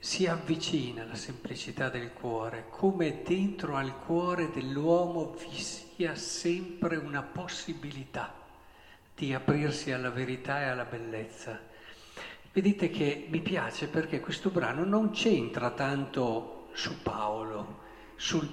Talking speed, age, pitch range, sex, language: 115 wpm, 50-69, 130-175 Hz, male, Italian